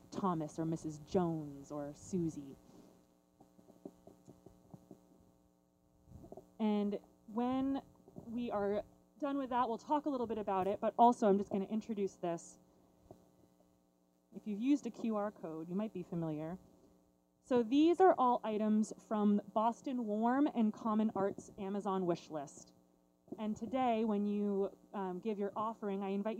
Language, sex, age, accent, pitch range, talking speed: English, female, 30-49, American, 170-230 Hz, 140 wpm